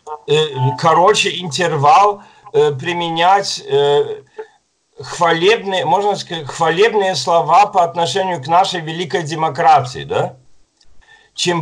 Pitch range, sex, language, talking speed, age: 145-210 Hz, male, Russian, 85 wpm, 50-69